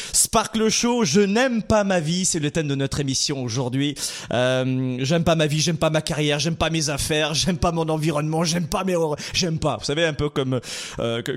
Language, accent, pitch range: French, French, 135-195 Hz